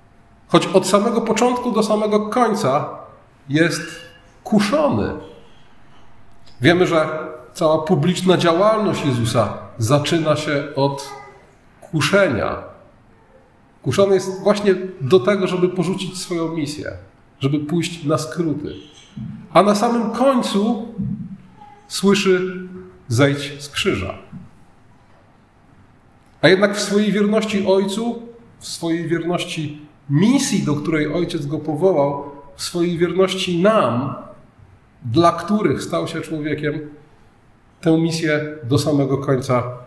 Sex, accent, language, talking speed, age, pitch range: male, native, Polish, 105 wpm, 40-59, 120-190 Hz